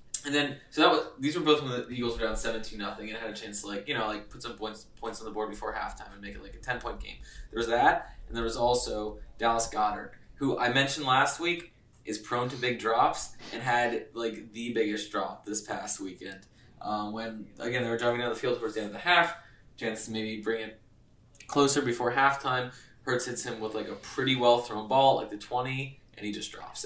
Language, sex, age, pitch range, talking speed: English, male, 20-39, 110-125 Hz, 240 wpm